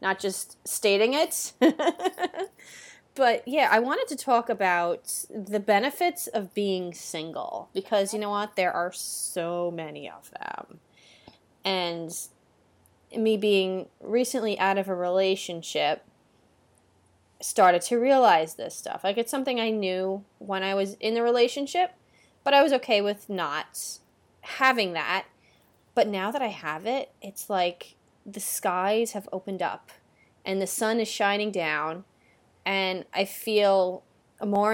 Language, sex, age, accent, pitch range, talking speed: English, female, 20-39, American, 175-220 Hz, 140 wpm